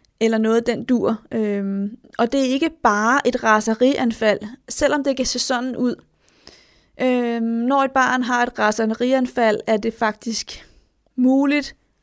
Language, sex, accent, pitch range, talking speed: Danish, female, native, 225-260 Hz, 145 wpm